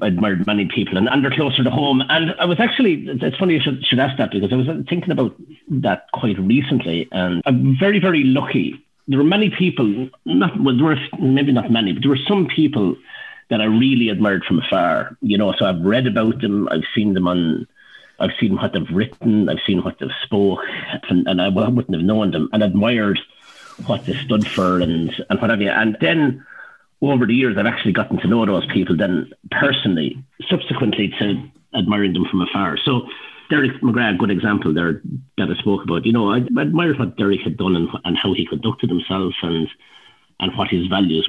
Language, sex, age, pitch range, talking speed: English, male, 50-69, 90-140 Hz, 205 wpm